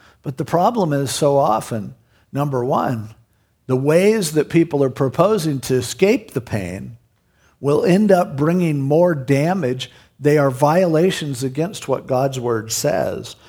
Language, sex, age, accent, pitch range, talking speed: English, male, 50-69, American, 130-165 Hz, 140 wpm